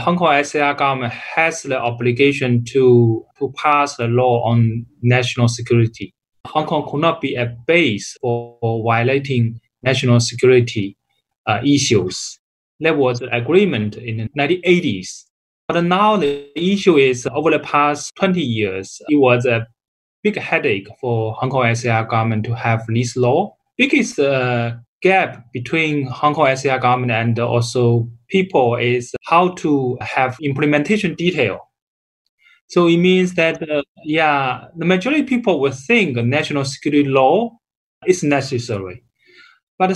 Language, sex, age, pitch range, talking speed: English, male, 20-39, 120-160 Hz, 145 wpm